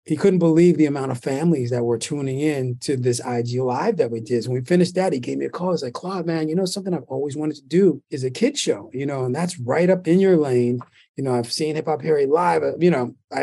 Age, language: 30-49, English